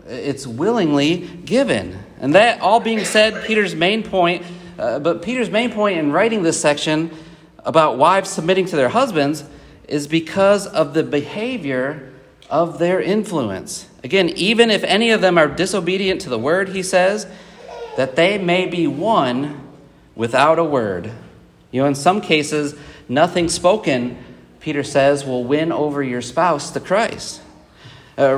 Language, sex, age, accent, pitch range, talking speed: English, male, 40-59, American, 150-205 Hz, 150 wpm